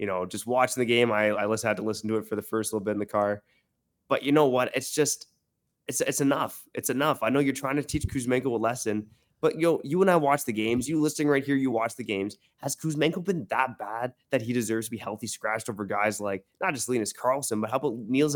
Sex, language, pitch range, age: male, English, 110-145 Hz, 20-39